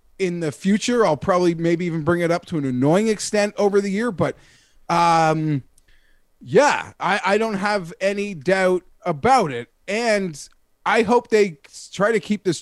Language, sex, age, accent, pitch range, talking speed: English, male, 30-49, American, 160-205 Hz, 170 wpm